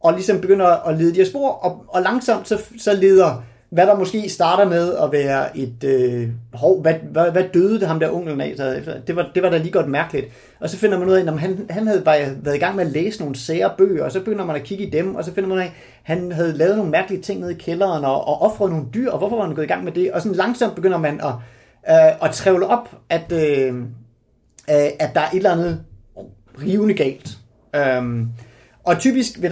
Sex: male